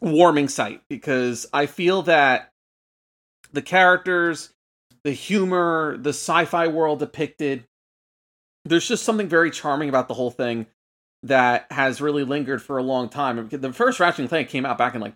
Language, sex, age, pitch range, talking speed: English, male, 30-49, 115-145 Hz, 160 wpm